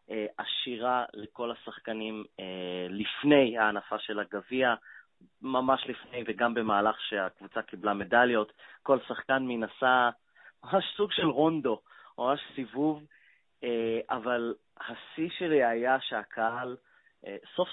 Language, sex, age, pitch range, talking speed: Hebrew, male, 20-39, 105-135 Hz, 100 wpm